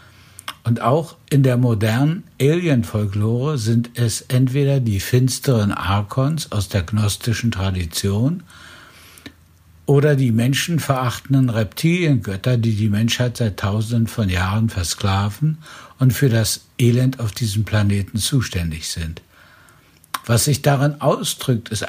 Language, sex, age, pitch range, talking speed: German, male, 60-79, 110-140 Hz, 115 wpm